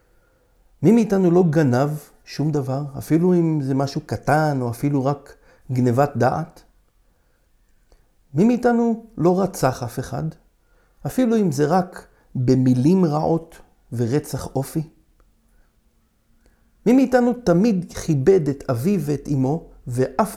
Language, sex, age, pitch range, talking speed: Hebrew, male, 60-79, 130-185 Hz, 115 wpm